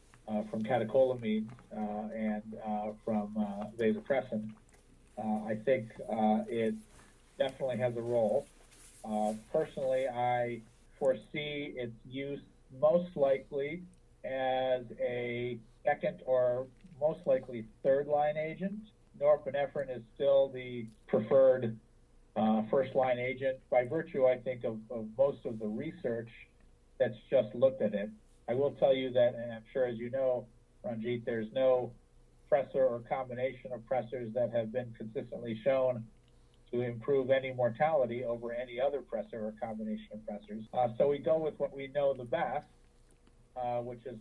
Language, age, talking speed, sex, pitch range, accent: English, 50-69, 145 wpm, male, 110-135 Hz, American